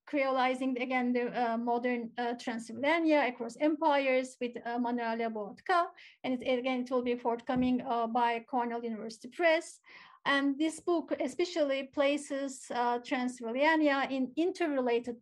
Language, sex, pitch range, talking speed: Turkish, female, 235-285 Hz, 135 wpm